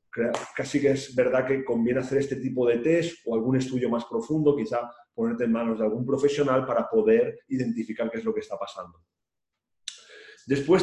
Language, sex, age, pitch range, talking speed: Spanish, male, 40-59, 125-155 Hz, 185 wpm